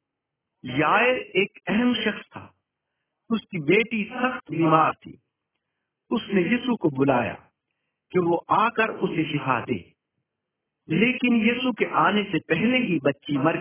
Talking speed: 130 wpm